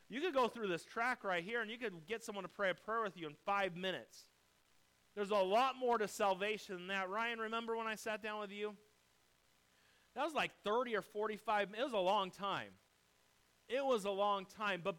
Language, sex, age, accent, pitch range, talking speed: English, male, 30-49, American, 195-250 Hz, 220 wpm